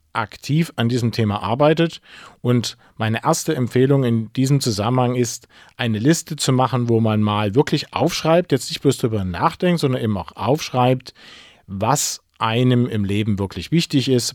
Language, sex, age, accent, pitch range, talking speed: German, male, 40-59, German, 105-140 Hz, 160 wpm